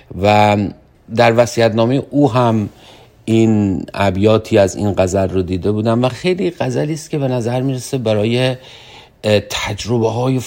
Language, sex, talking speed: Persian, male, 130 wpm